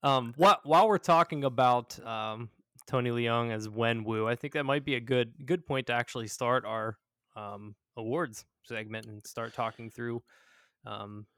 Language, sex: English, male